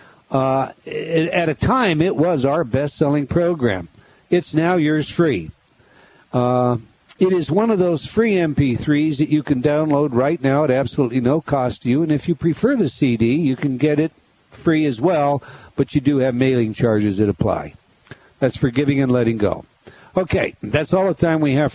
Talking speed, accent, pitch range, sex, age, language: 180 wpm, American, 130-165 Hz, male, 60-79, English